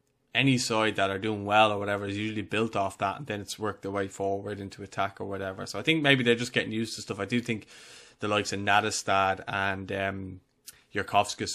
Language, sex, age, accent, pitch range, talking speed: English, male, 20-39, Irish, 95-110 Hz, 225 wpm